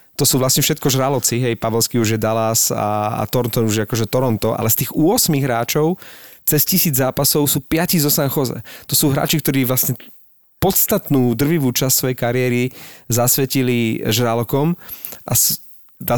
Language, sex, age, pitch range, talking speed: Slovak, male, 30-49, 115-135 Hz, 165 wpm